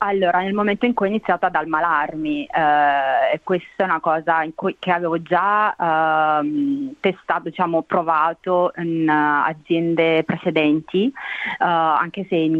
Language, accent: Italian, native